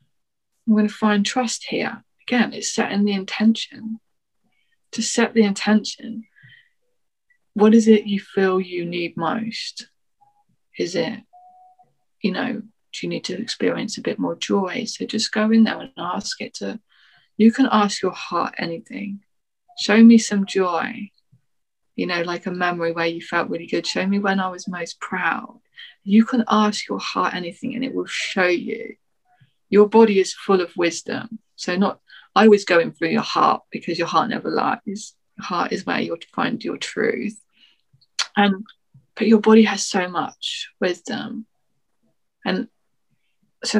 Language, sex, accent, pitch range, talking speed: English, female, British, 190-235 Hz, 165 wpm